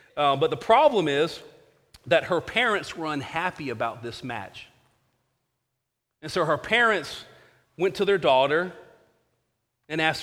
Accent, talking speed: American, 135 wpm